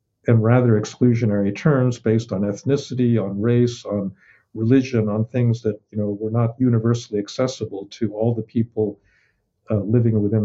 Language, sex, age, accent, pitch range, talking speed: English, male, 50-69, American, 105-120 Hz, 155 wpm